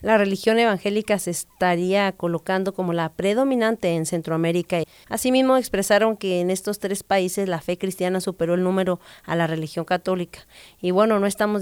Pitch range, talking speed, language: 170-200 Hz, 170 wpm, English